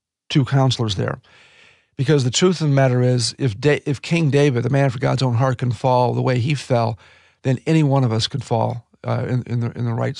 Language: English